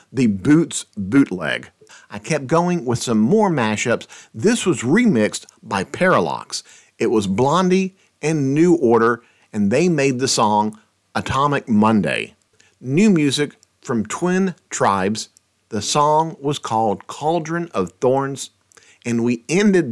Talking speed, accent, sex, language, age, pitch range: 130 wpm, American, male, English, 50-69, 110-165 Hz